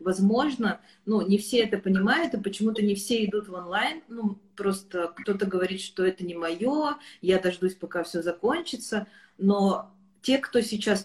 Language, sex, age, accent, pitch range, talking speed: Russian, female, 30-49, native, 185-220 Hz, 165 wpm